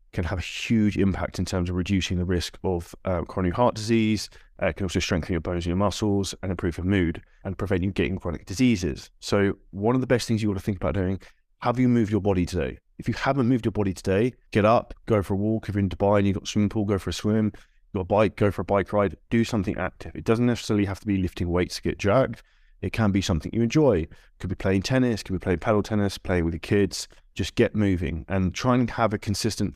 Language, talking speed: English, 270 wpm